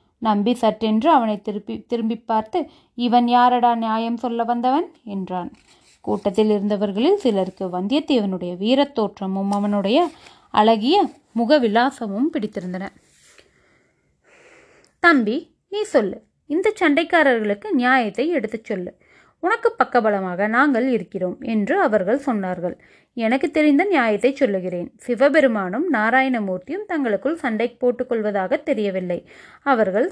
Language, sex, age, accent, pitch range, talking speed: Tamil, female, 20-39, native, 210-295 Hz, 100 wpm